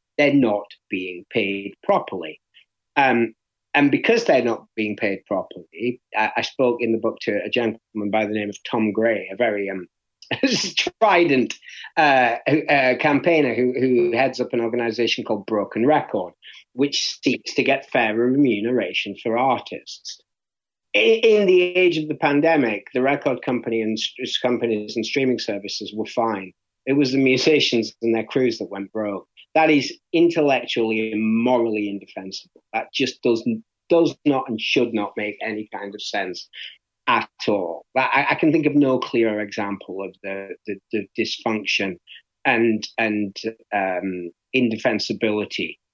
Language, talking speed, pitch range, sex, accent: English, 155 wpm, 105-125 Hz, male, British